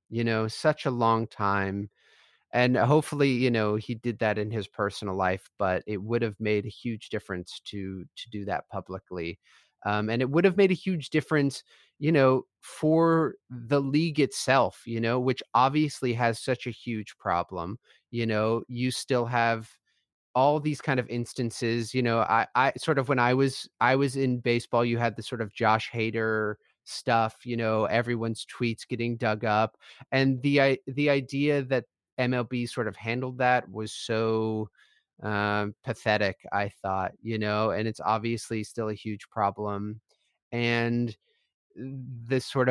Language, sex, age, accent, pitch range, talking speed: English, male, 30-49, American, 105-125 Hz, 170 wpm